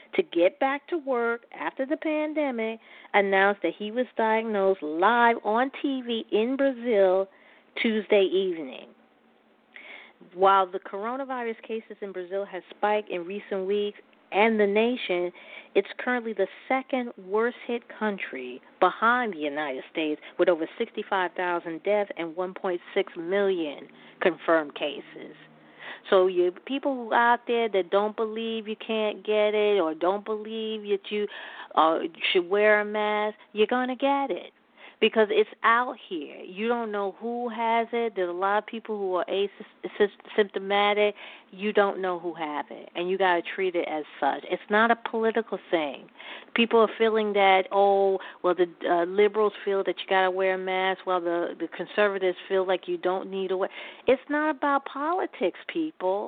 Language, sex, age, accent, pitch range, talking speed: English, female, 40-59, American, 190-235 Hz, 160 wpm